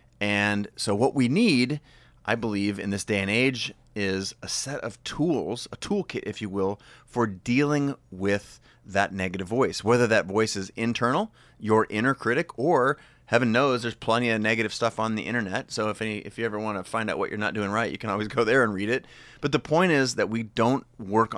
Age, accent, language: 30-49, American, English